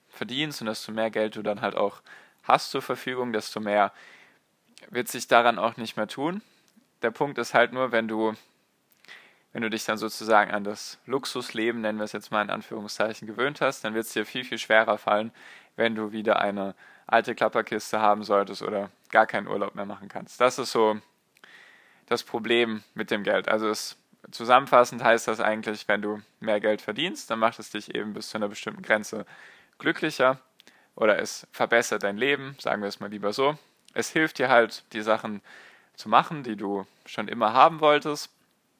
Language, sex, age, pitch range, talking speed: German, male, 10-29, 105-125 Hz, 190 wpm